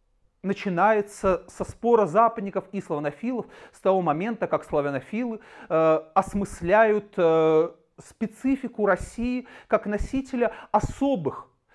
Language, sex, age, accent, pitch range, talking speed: Russian, male, 40-59, native, 175-230 Hz, 95 wpm